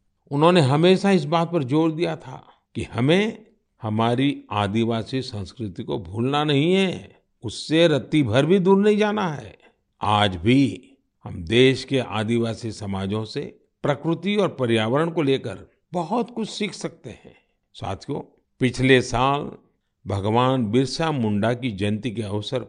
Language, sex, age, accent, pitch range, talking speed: Hindi, male, 50-69, native, 110-165 Hz, 140 wpm